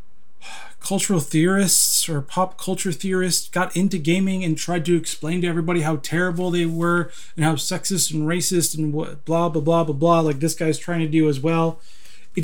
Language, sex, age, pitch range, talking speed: English, male, 30-49, 160-205 Hz, 190 wpm